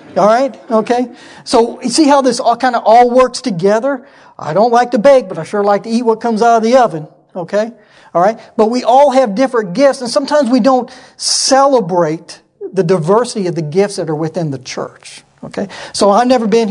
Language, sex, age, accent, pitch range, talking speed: English, male, 40-59, American, 170-230 Hz, 215 wpm